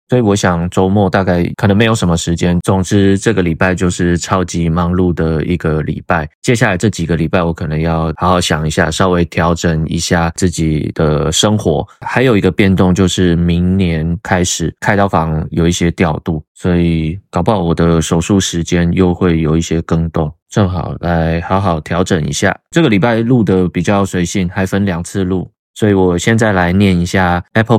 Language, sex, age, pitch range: Chinese, male, 20-39, 85-105 Hz